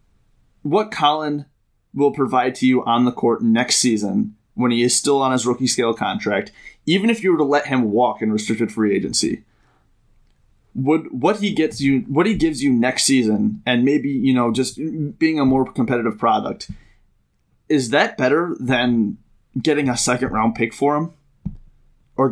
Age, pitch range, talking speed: 20-39, 110-135 Hz, 175 wpm